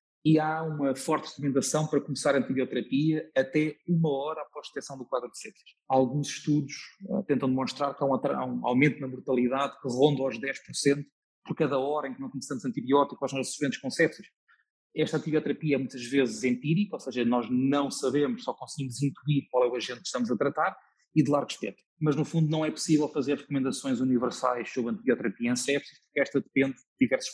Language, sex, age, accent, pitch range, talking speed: Portuguese, male, 20-39, Portuguese, 130-155 Hz, 195 wpm